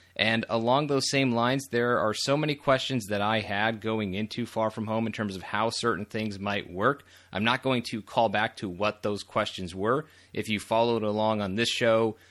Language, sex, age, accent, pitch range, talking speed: English, male, 30-49, American, 100-120 Hz, 215 wpm